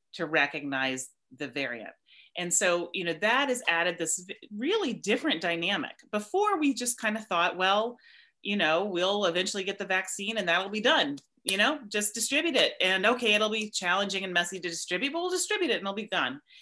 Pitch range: 155-210 Hz